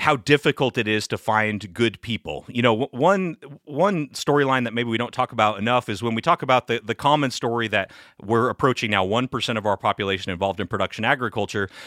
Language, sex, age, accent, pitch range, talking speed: English, male, 30-49, American, 105-135 Hz, 205 wpm